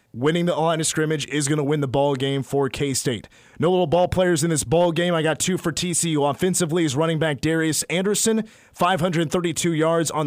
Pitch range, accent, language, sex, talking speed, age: 140-170 Hz, American, English, male, 235 wpm, 30-49